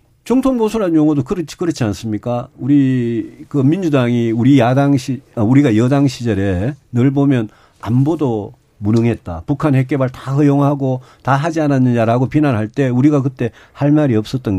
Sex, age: male, 40-59